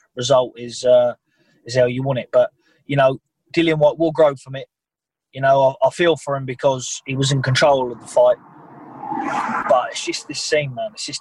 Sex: male